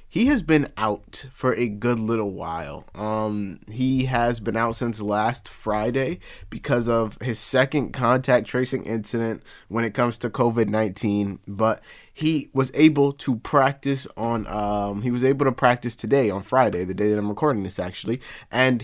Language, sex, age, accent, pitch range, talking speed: English, male, 20-39, American, 105-130 Hz, 170 wpm